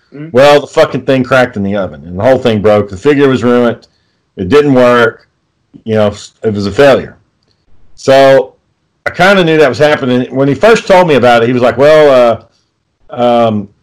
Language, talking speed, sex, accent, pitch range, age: English, 205 wpm, male, American, 115-140 Hz, 40-59